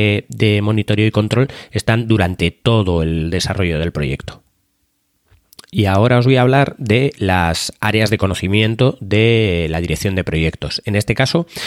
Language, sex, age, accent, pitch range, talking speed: Spanish, male, 30-49, Spanish, 100-130 Hz, 155 wpm